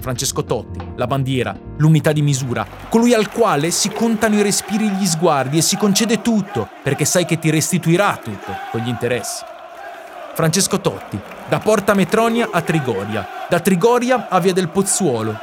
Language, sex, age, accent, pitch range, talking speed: Italian, male, 30-49, native, 140-200 Hz, 165 wpm